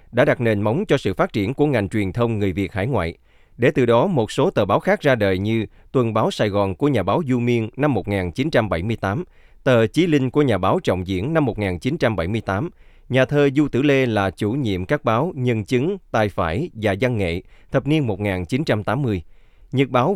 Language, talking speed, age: Vietnamese, 210 wpm, 20-39